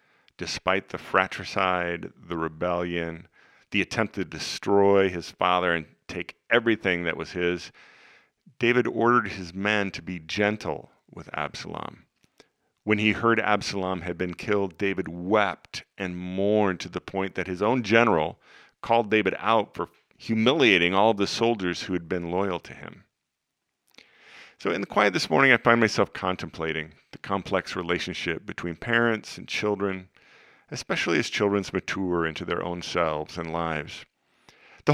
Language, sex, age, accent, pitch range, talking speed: English, male, 40-59, American, 85-105 Hz, 150 wpm